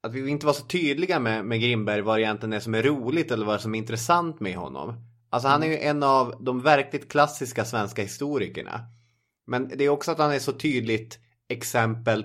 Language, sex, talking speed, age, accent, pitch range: English, male, 215 wpm, 20-39, Swedish, 100-125 Hz